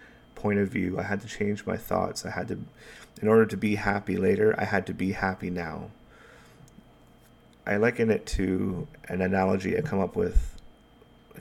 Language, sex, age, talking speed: English, male, 30-49, 185 wpm